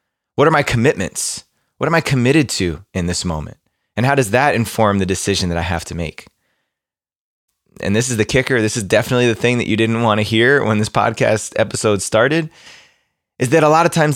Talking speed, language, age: 215 wpm, English, 20-39